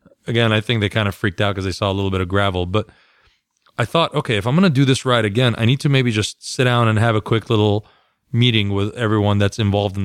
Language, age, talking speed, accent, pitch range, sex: English, 30-49, 275 wpm, American, 105-135 Hz, male